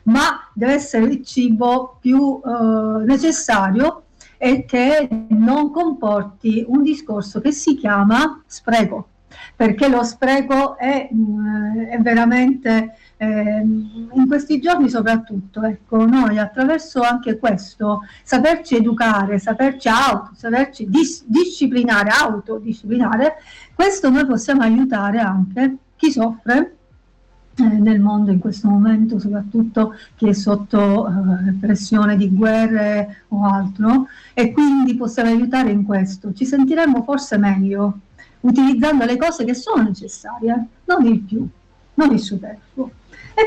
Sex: female